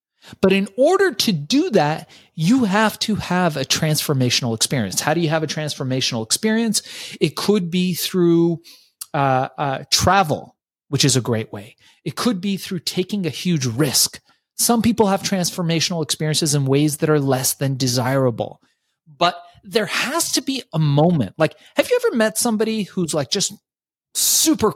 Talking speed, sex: 165 wpm, male